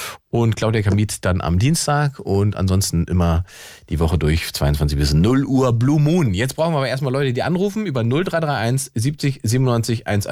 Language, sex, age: German, male, 40-59